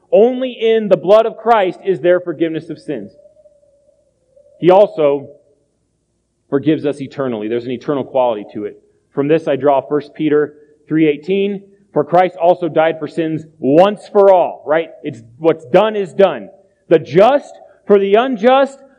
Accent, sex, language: American, male, English